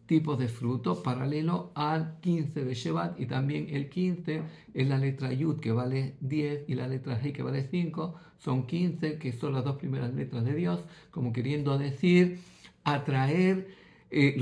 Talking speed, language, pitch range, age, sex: 170 wpm, Greek, 130-165 Hz, 50-69, male